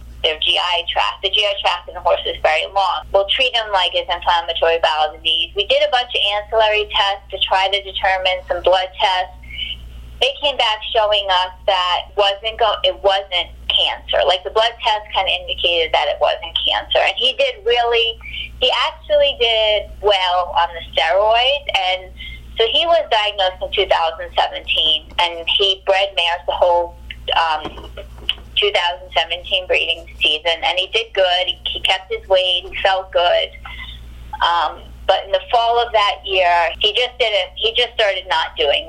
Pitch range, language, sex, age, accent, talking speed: 170-245 Hz, English, female, 20-39, American, 175 wpm